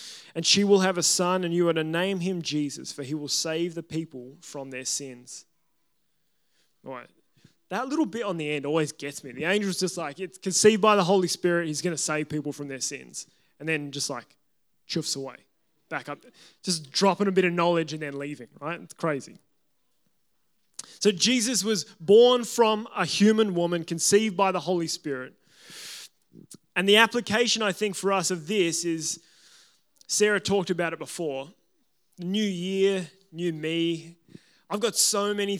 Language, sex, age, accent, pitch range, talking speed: English, male, 20-39, Australian, 160-195 Hz, 180 wpm